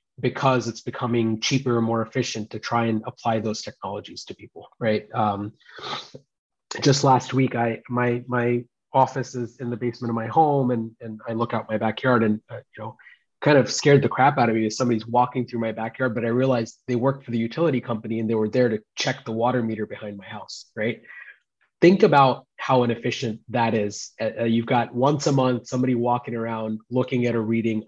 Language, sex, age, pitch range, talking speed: English, male, 30-49, 115-130 Hz, 210 wpm